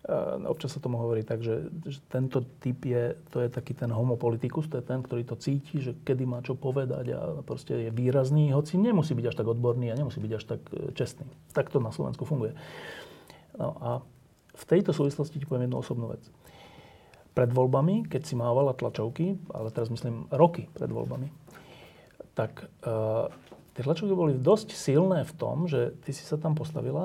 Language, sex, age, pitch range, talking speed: Slovak, male, 40-59, 120-155 Hz, 185 wpm